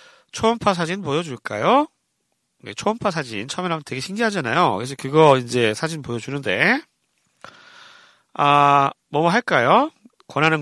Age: 40-59